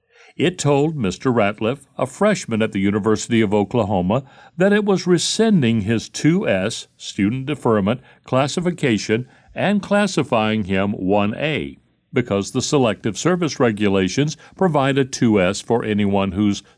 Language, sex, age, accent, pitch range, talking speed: English, male, 60-79, American, 100-150 Hz, 125 wpm